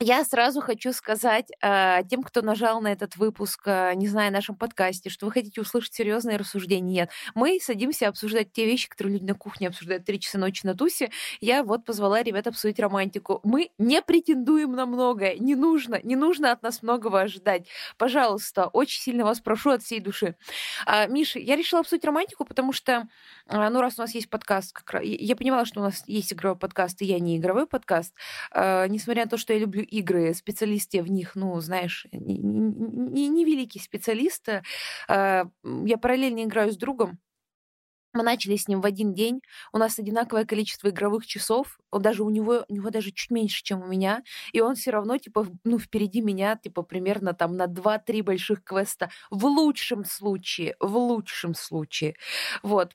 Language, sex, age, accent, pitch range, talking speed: Russian, female, 20-39, native, 195-240 Hz, 185 wpm